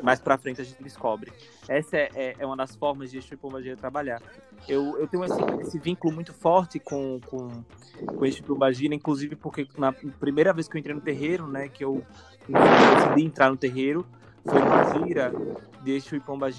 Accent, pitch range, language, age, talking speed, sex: Brazilian, 125-145 Hz, Portuguese, 20-39, 185 wpm, male